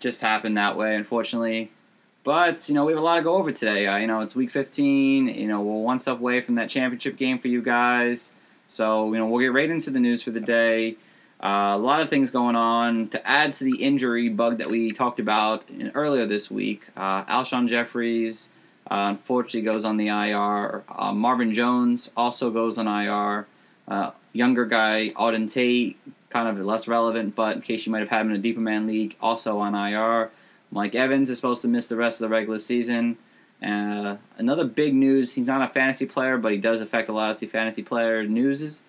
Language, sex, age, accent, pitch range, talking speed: English, male, 20-39, American, 110-125 Hz, 215 wpm